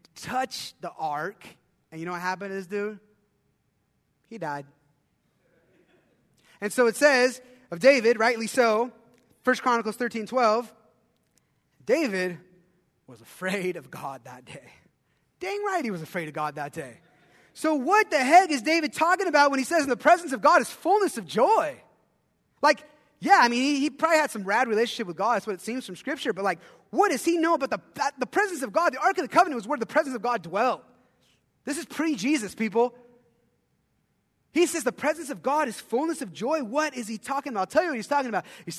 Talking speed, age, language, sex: 200 wpm, 20-39, English, male